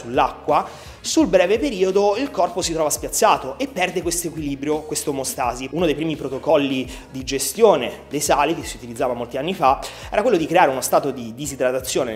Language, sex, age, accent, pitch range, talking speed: Italian, male, 30-49, native, 135-190 Hz, 180 wpm